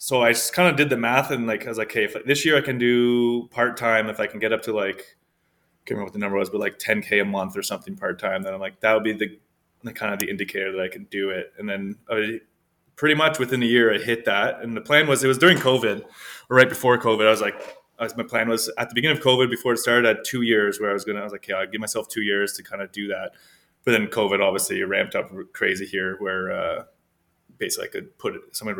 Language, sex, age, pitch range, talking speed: English, male, 20-39, 100-130 Hz, 290 wpm